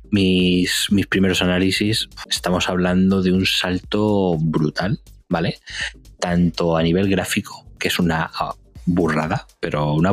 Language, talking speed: Spanish, 130 wpm